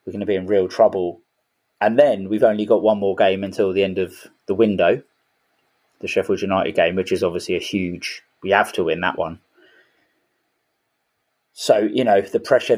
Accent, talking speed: British, 190 wpm